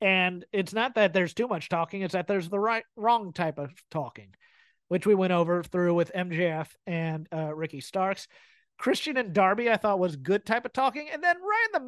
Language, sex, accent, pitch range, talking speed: English, male, American, 175-210 Hz, 215 wpm